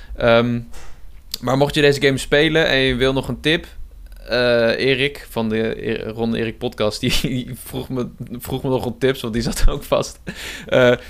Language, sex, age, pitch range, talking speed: Dutch, male, 20-39, 120-160 Hz, 195 wpm